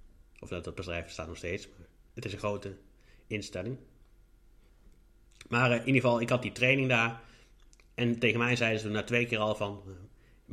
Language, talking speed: Dutch, 205 wpm